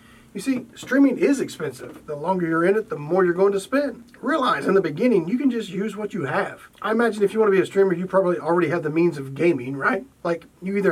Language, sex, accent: English, male, American